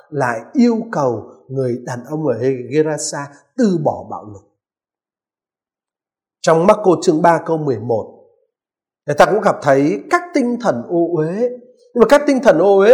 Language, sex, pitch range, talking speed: Vietnamese, male, 150-235 Hz, 170 wpm